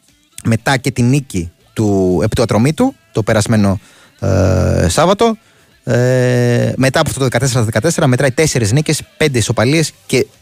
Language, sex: Greek, male